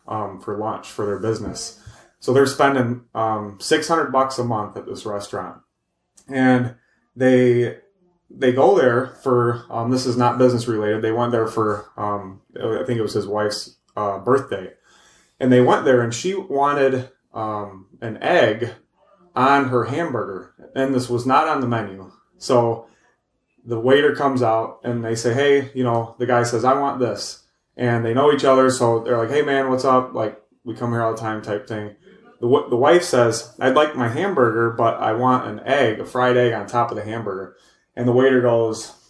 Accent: American